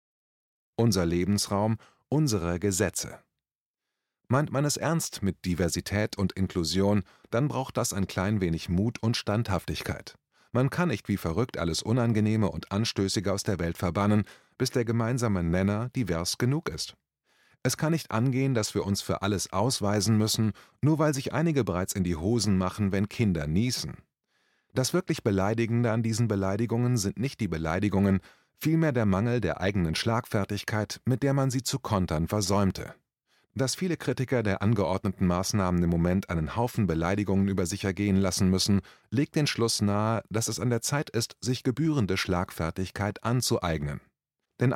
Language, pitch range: German, 95-125 Hz